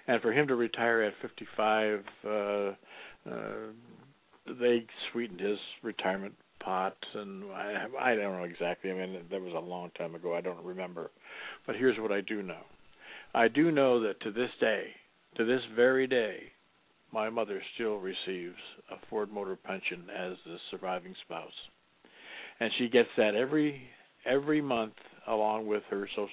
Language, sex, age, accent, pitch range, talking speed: English, male, 60-79, American, 105-135 Hz, 160 wpm